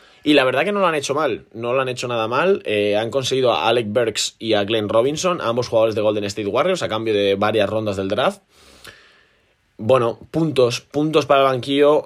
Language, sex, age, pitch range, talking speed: Spanish, male, 20-39, 95-115 Hz, 220 wpm